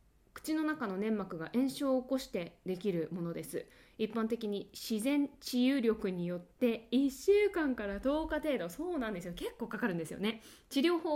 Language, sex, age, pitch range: Japanese, female, 20-39, 180-280 Hz